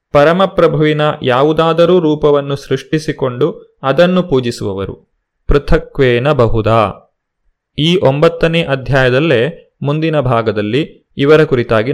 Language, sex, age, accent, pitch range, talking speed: Kannada, male, 30-49, native, 125-165 Hz, 75 wpm